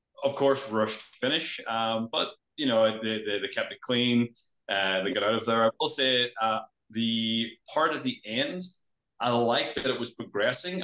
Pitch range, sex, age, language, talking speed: 105-130 Hz, male, 20-39, English, 195 wpm